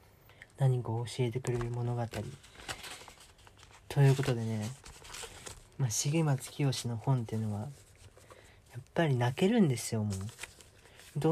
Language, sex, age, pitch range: Japanese, male, 40-59, 105-140 Hz